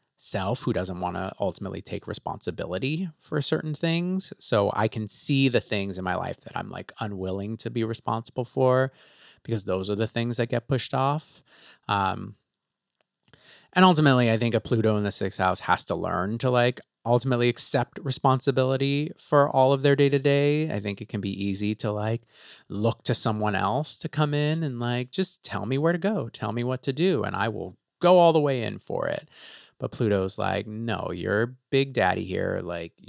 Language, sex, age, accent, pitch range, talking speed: English, male, 30-49, American, 105-135 Hz, 195 wpm